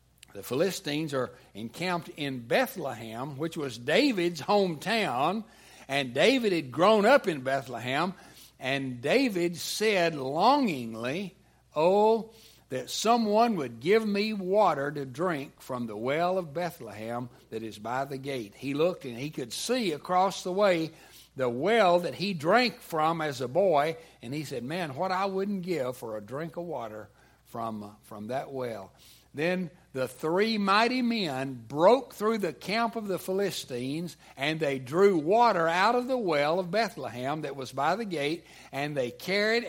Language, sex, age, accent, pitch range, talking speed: English, male, 60-79, American, 125-185 Hz, 160 wpm